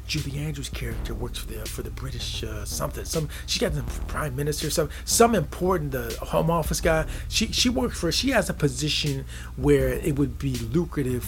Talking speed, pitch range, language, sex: 195 wpm, 120-155 Hz, English, male